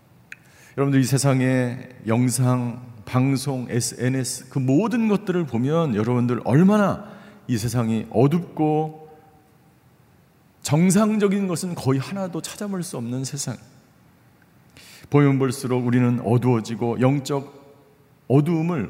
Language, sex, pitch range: Korean, male, 115-155 Hz